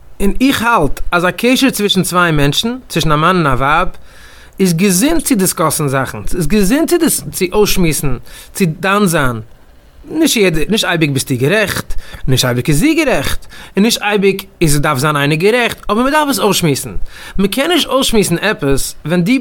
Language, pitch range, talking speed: English, 175-230 Hz, 120 wpm